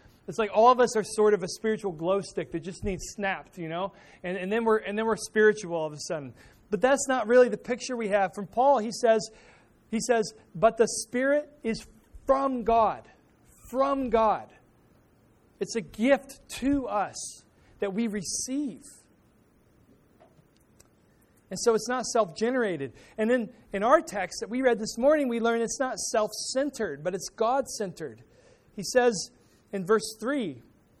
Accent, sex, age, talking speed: American, male, 40-59, 170 wpm